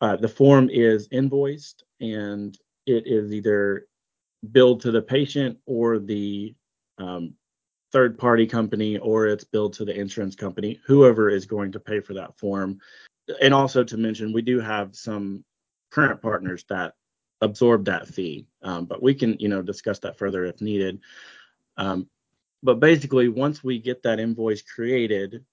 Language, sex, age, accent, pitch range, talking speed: English, male, 30-49, American, 100-120 Hz, 155 wpm